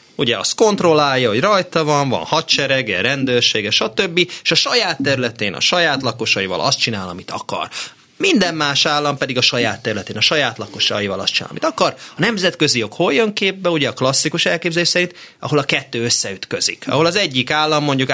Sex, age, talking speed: male, 30-49, 180 wpm